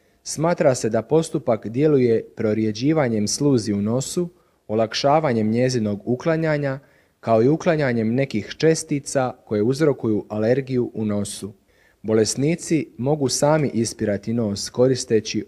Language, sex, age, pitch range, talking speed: Croatian, male, 30-49, 105-145 Hz, 110 wpm